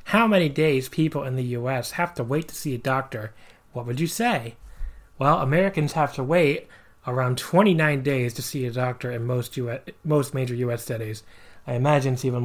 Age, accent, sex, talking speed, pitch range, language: 30-49, American, male, 195 wpm, 120-145 Hz, English